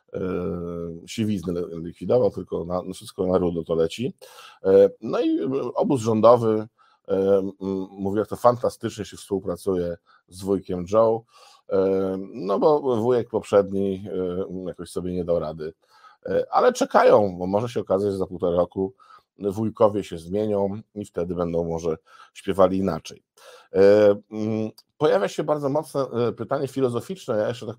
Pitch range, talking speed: 95-125 Hz, 130 wpm